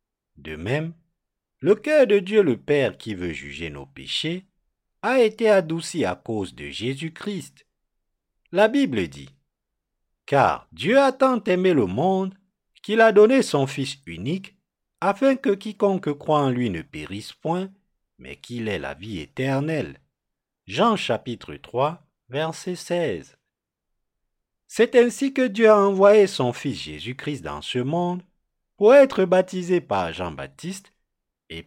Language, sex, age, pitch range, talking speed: French, male, 50-69, 120-205 Hz, 140 wpm